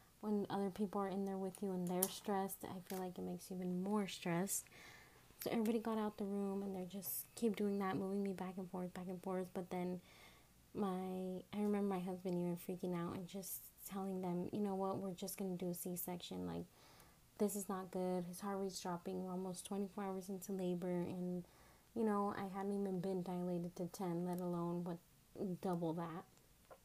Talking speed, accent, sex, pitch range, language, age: 210 wpm, American, female, 180-200 Hz, English, 20-39